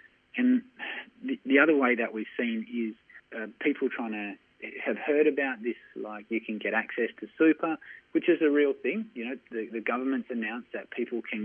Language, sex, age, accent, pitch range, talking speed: English, male, 30-49, Australian, 110-130 Hz, 195 wpm